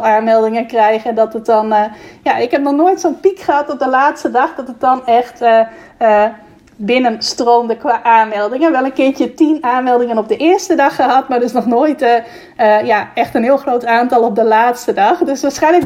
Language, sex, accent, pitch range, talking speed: Dutch, female, Dutch, 225-285 Hz, 220 wpm